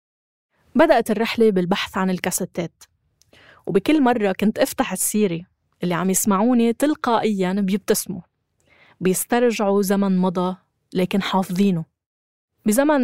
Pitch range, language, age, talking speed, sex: 175-220 Hz, Arabic, 20-39, 95 wpm, female